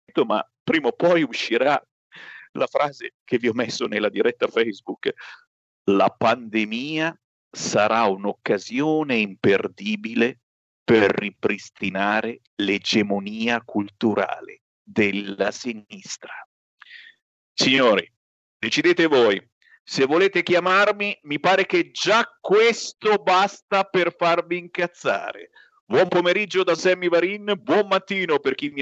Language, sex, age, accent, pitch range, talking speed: Italian, male, 50-69, native, 120-200 Hz, 105 wpm